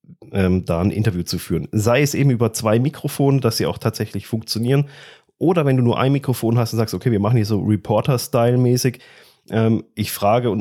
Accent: German